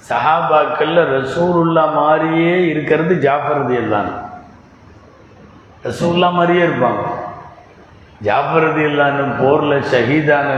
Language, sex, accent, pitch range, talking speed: Tamil, male, native, 130-160 Hz, 70 wpm